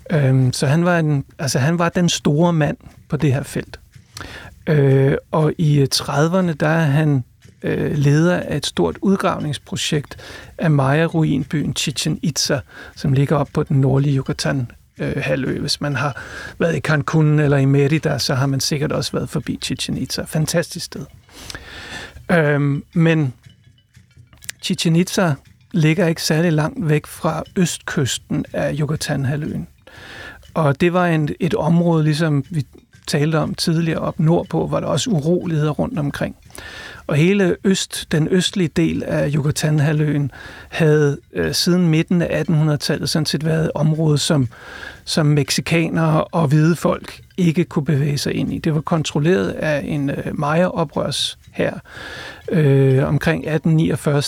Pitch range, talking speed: 145-170 Hz, 145 wpm